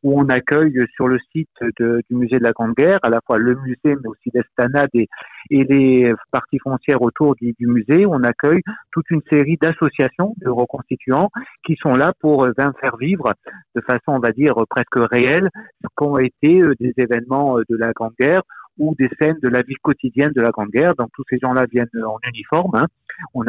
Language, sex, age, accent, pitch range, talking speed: French, male, 50-69, French, 120-150 Hz, 210 wpm